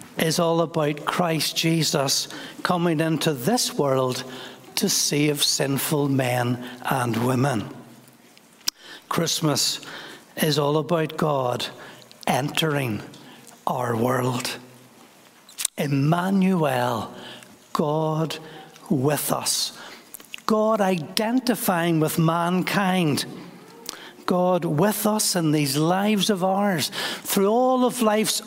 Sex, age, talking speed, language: male, 60-79, 90 wpm, English